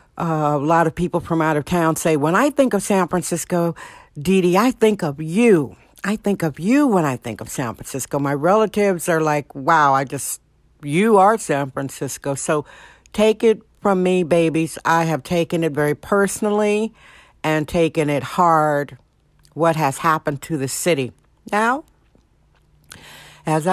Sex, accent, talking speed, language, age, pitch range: female, American, 170 wpm, English, 60-79, 160-205 Hz